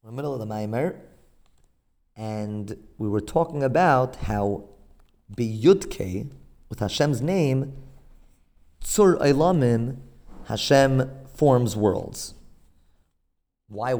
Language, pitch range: English, 100-155 Hz